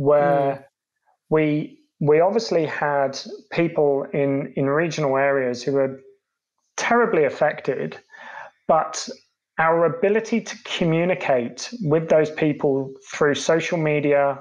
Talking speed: 105 wpm